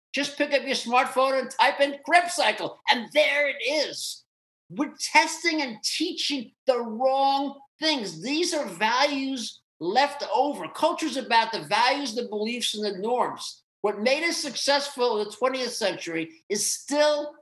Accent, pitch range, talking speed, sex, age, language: American, 220-300 Hz, 155 wpm, male, 50-69, English